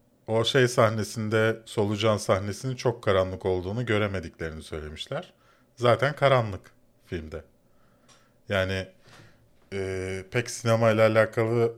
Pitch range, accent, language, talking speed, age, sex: 95-125 Hz, native, Turkish, 90 wpm, 40-59, male